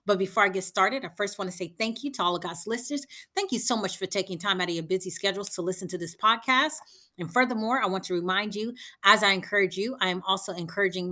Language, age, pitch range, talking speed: English, 30-49, 185-230 Hz, 265 wpm